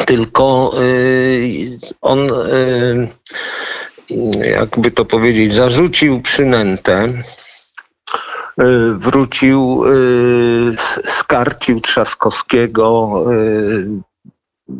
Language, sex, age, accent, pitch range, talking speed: Polish, male, 50-69, native, 115-145 Hz, 40 wpm